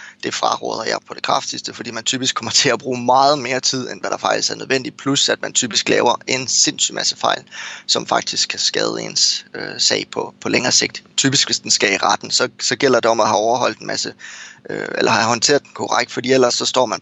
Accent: native